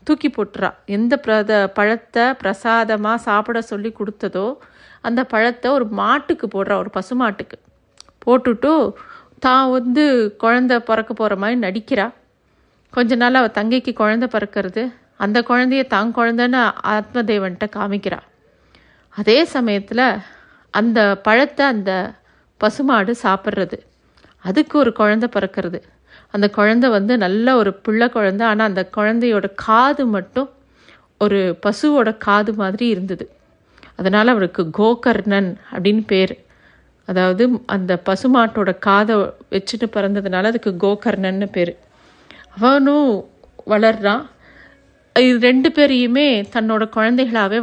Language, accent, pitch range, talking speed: Tamil, native, 200-245 Hz, 105 wpm